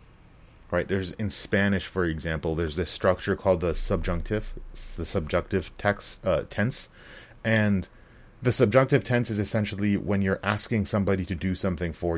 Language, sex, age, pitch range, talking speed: English, male, 30-49, 90-110 Hz, 155 wpm